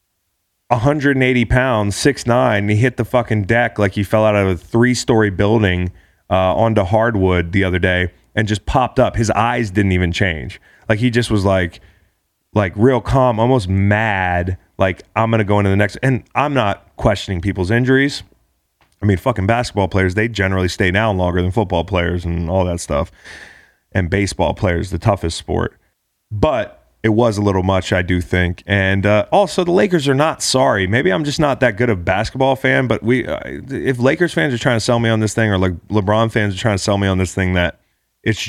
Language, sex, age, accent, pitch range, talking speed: English, male, 30-49, American, 90-115 Hz, 205 wpm